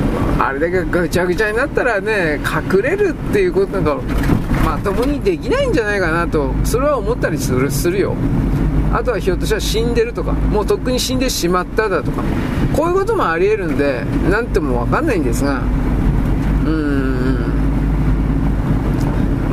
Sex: male